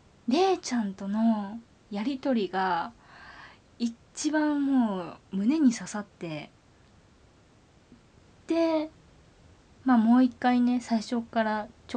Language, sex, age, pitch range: Japanese, female, 20-39, 190-255 Hz